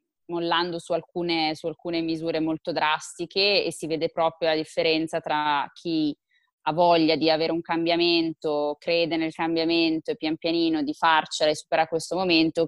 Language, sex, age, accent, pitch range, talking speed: Italian, female, 20-39, native, 155-175 Hz, 160 wpm